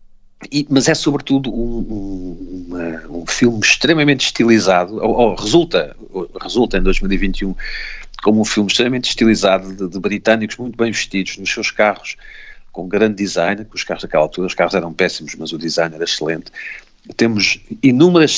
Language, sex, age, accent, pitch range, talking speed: Portuguese, male, 50-69, Portuguese, 95-120 Hz, 165 wpm